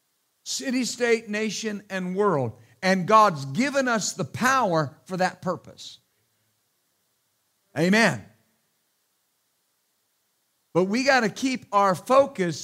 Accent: American